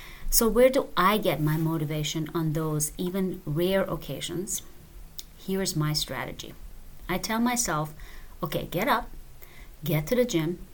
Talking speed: 140 wpm